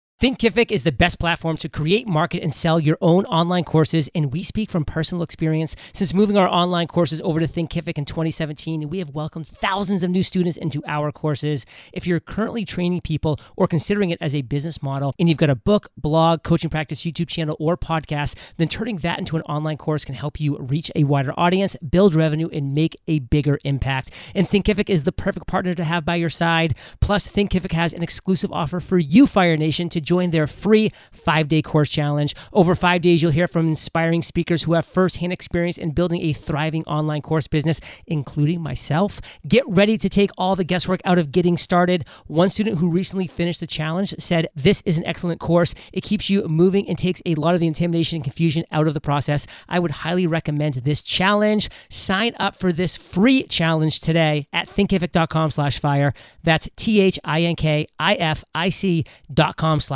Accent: American